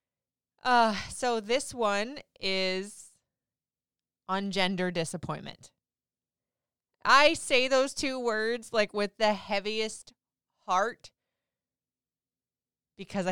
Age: 20-39